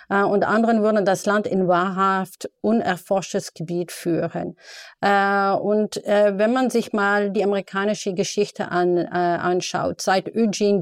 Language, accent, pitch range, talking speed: German, German, 180-210 Hz, 145 wpm